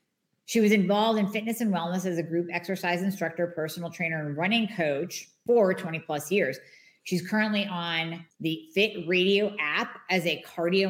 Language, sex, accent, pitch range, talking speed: English, female, American, 165-195 Hz, 170 wpm